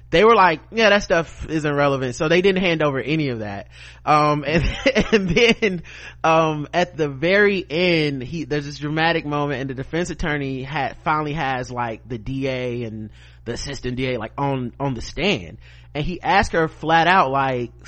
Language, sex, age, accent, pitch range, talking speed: English, male, 30-49, American, 120-175 Hz, 190 wpm